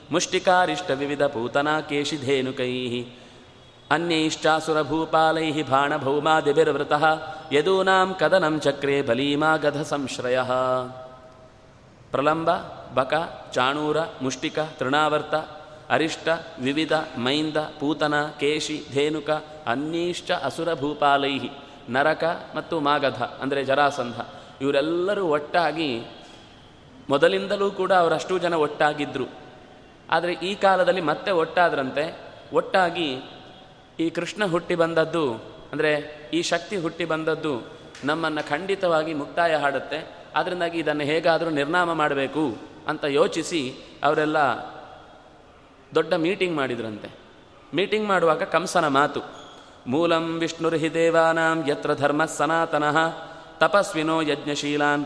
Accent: native